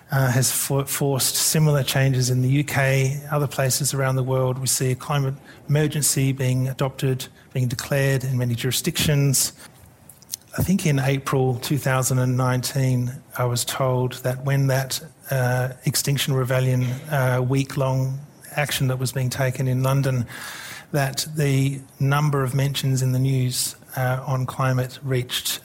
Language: English